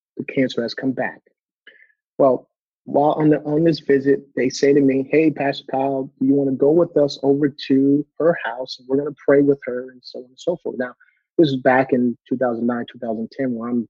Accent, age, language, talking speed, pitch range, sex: American, 30-49, English, 210 wpm, 125-150 Hz, male